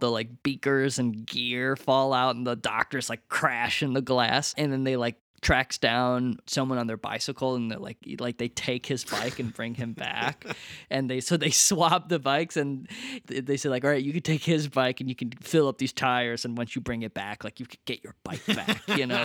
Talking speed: 240 wpm